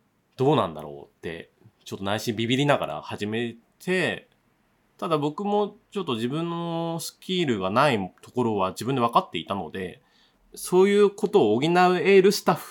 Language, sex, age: Japanese, male, 30-49